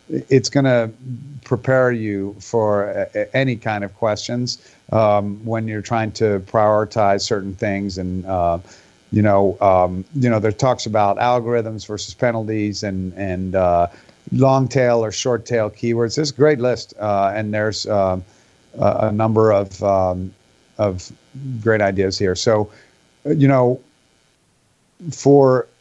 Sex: male